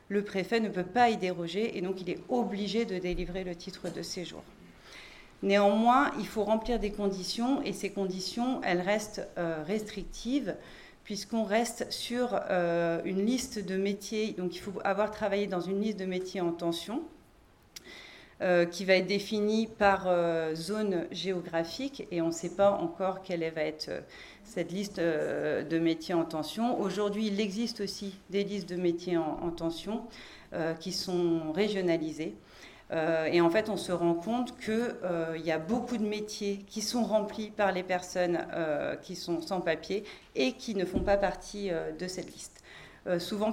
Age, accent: 40-59, French